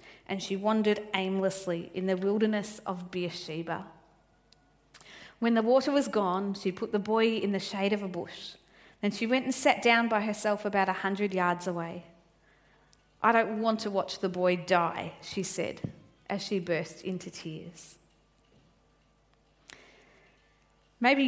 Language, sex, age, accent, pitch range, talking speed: English, female, 40-59, Australian, 185-225 Hz, 145 wpm